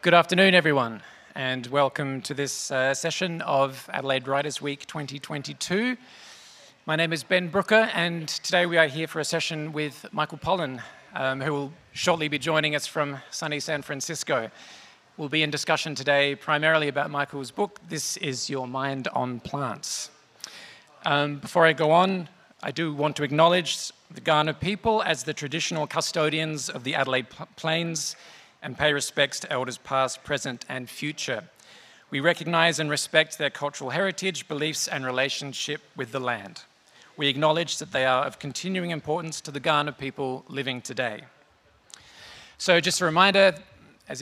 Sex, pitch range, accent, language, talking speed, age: male, 140-165 Hz, Australian, English, 160 wpm, 40-59